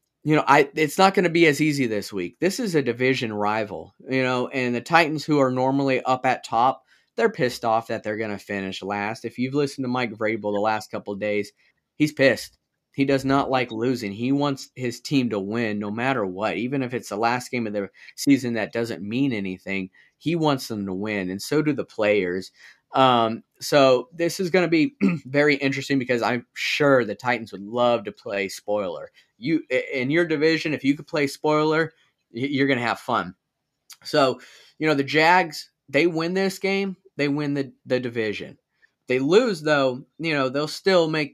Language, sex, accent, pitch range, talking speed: English, male, American, 115-150 Hz, 205 wpm